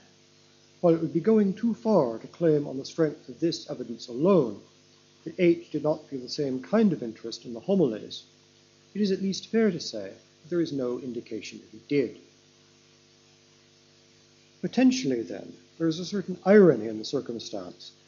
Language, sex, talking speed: English, male, 180 wpm